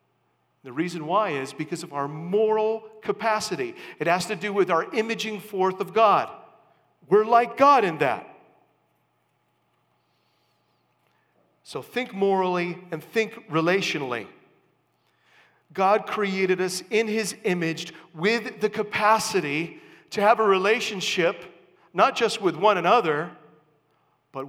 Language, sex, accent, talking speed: English, male, American, 120 wpm